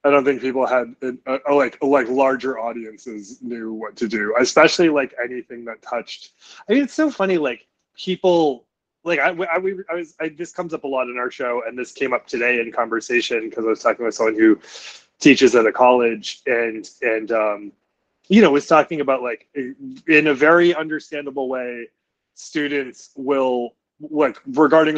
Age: 20-39